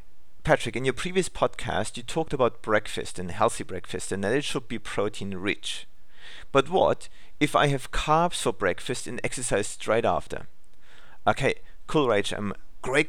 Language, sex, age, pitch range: English, male, 40-59, 105-135 Hz